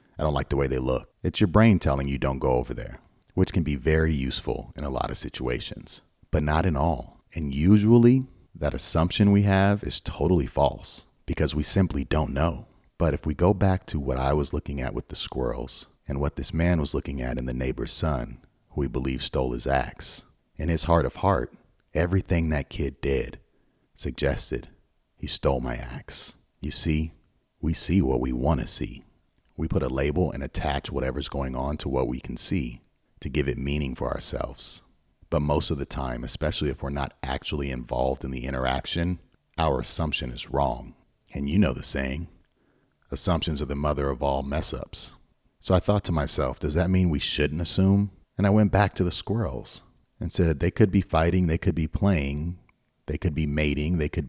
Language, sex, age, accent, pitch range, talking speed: English, male, 40-59, American, 70-90 Hz, 200 wpm